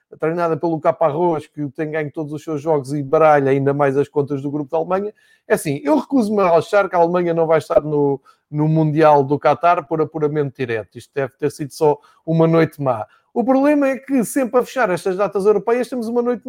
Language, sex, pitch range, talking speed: Portuguese, male, 155-215 Hz, 220 wpm